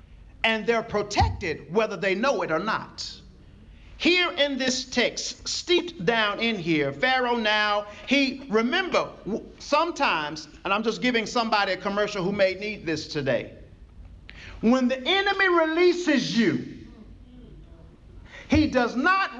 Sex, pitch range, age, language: male, 195-280 Hz, 40-59, English